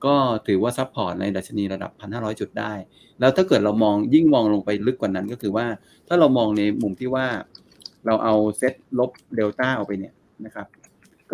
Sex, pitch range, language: male, 105-125 Hz, Thai